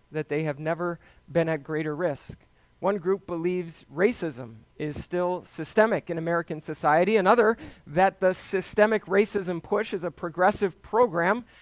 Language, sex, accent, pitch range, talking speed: English, male, American, 150-195 Hz, 145 wpm